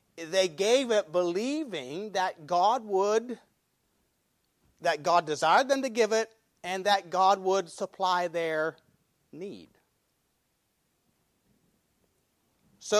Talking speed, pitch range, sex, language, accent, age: 100 wpm, 150-205 Hz, male, English, American, 40-59